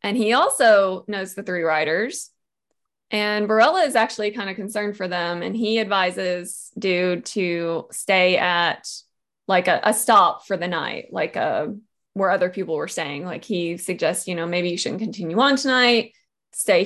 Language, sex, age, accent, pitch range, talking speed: English, female, 20-39, American, 195-235 Hz, 175 wpm